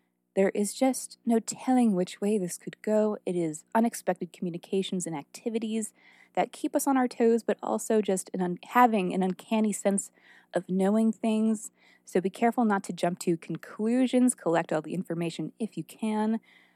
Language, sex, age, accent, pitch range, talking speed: English, female, 20-39, American, 160-215 Hz, 170 wpm